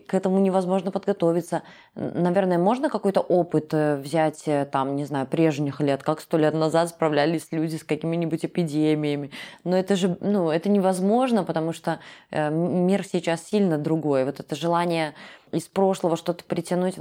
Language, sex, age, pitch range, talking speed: Russian, female, 20-39, 150-200 Hz, 150 wpm